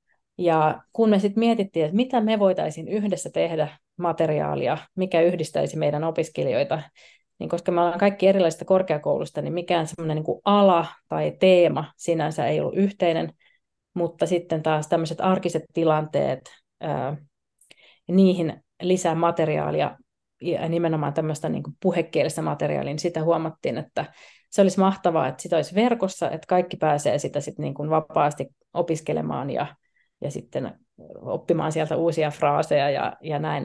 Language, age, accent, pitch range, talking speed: Finnish, 30-49, native, 155-185 Hz, 140 wpm